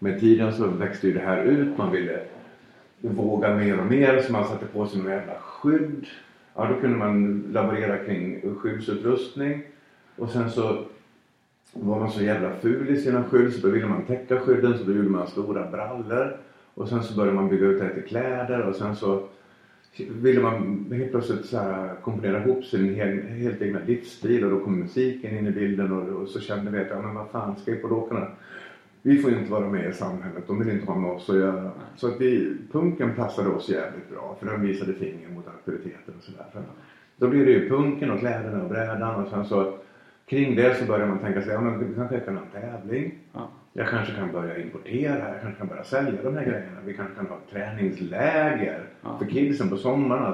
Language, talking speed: Swedish, 210 wpm